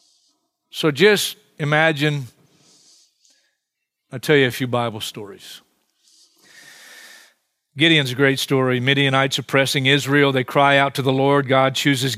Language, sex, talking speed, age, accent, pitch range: English, male, 125 wpm, 40-59, American, 140-195 Hz